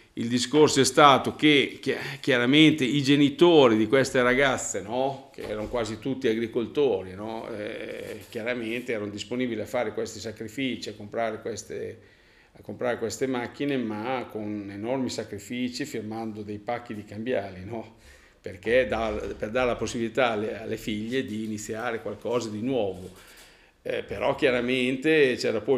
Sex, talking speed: male, 145 wpm